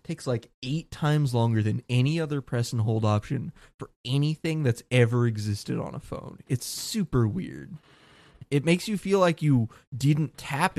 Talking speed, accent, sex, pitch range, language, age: 170 wpm, American, male, 115-155 Hz, English, 20-39